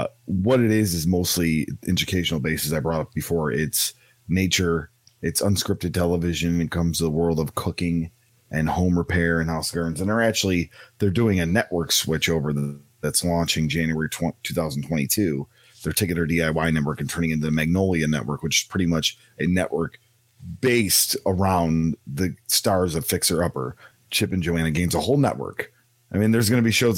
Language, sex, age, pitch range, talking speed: English, male, 30-49, 85-110 Hz, 185 wpm